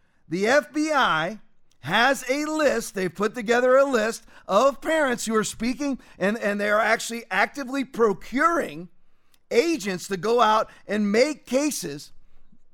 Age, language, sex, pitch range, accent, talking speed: 40-59, English, male, 195-265 Hz, American, 135 wpm